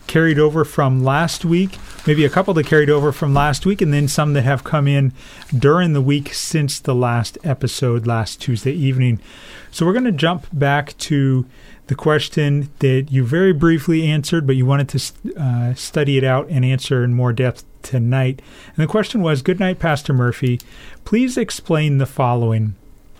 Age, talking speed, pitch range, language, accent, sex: 40-59, 185 wpm, 125-160 Hz, English, American, male